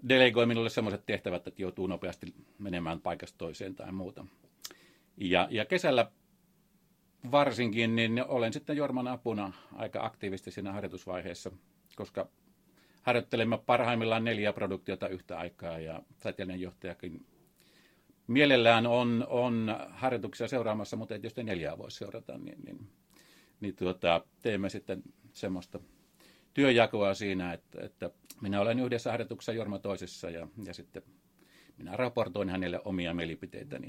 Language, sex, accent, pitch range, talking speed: Finnish, male, native, 95-115 Hz, 125 wpm